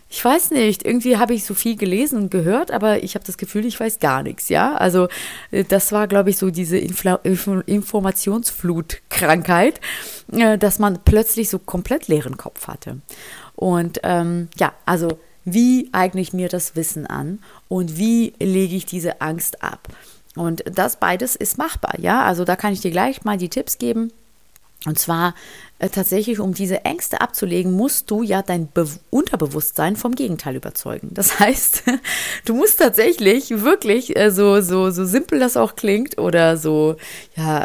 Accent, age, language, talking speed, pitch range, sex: German, 30-49, German, 160 wpm, 180-225 Hz, female